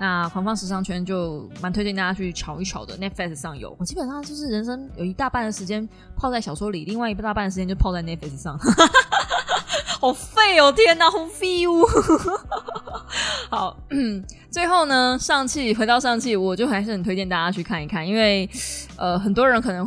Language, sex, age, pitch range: Chinese, female, 20-39, 180-260 Hz